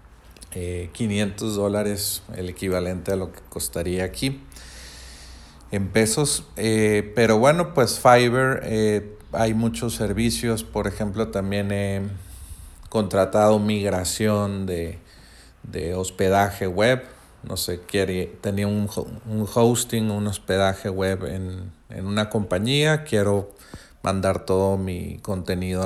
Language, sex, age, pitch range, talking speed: Spanish, male, 40-59, 90-110 Hz, 115 wpm